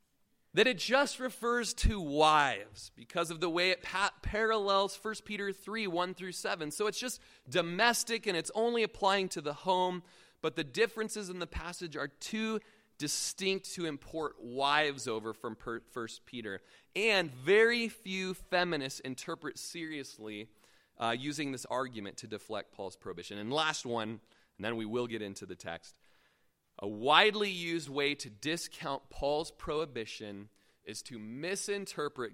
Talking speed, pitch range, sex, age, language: 150 wpm, 130-195 Hz, male, 30-49, English